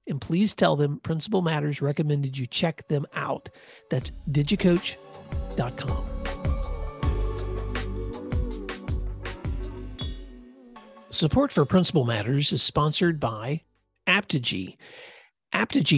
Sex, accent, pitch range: male, American, 120-165 Hz